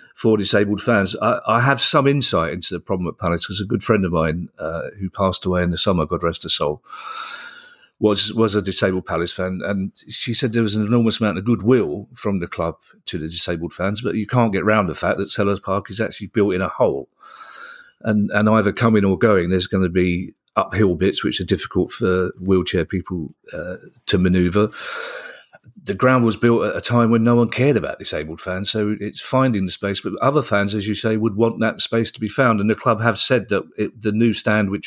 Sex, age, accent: male, 40-59, British